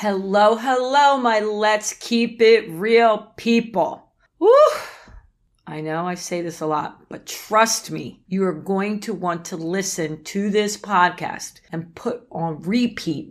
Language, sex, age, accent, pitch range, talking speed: English, female, 40-59, American, 175-230 Hz, 145 wpm